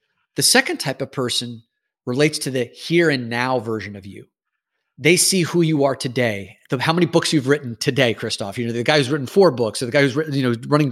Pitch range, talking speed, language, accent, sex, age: 125-170 Hz, 220 wpm, French, American, male, 30-49